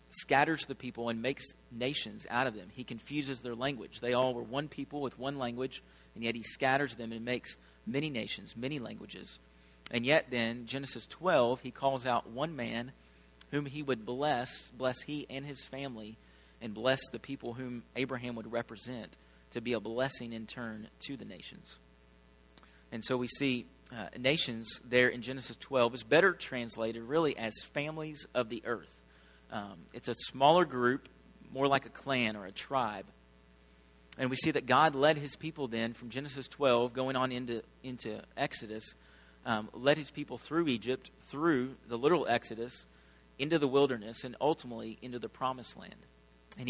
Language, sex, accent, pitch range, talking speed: English, male, American, 110-135 Hz, 175 wpm